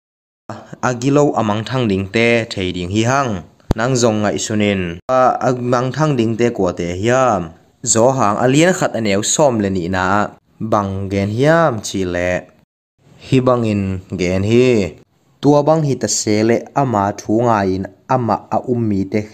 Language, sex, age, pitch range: English, male, 20-39, 95-120 Hz